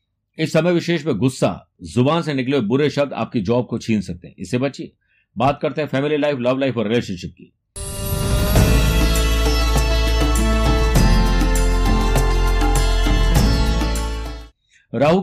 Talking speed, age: 105 wpm, 50-69